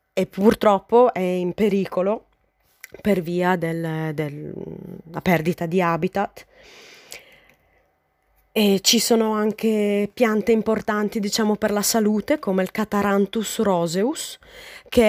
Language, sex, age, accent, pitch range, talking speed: Italian, female, 20-39, native, 180-235 Hz, 105 wpm